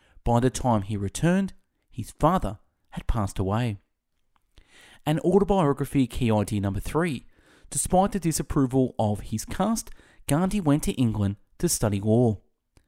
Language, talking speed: English, 135 wpm